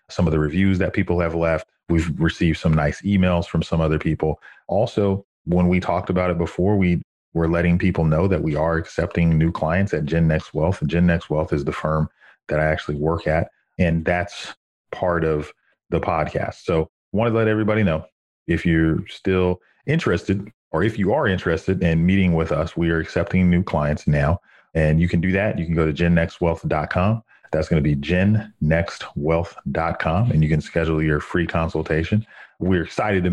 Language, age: English, 40-59